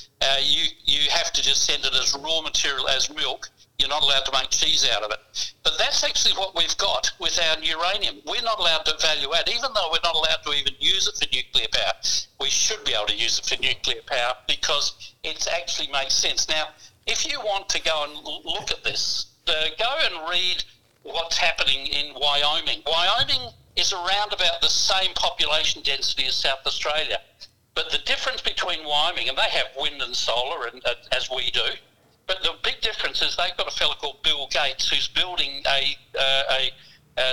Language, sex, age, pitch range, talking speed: English, male, 60-79, 135-165 Hz, 205 wpm